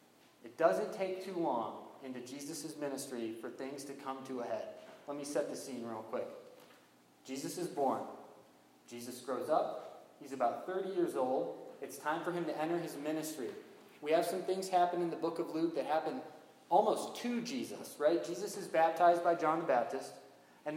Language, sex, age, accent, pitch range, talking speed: English, male, 20-39, American, 150-205 Hz, 190 wpm